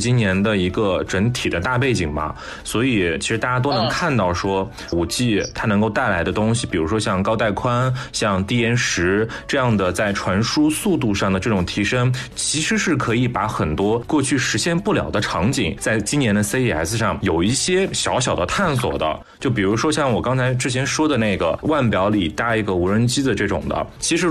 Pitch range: 100-130 Hz